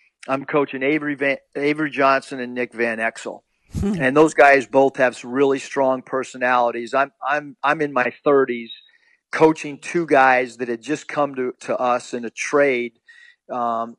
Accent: American